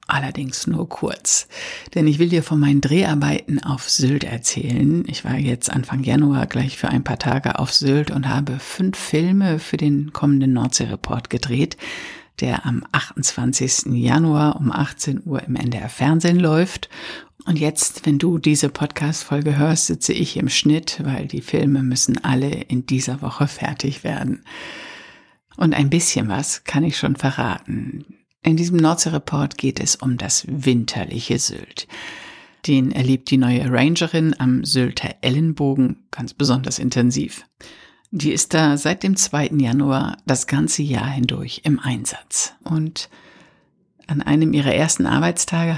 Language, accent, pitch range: German, German, 135-165 Hz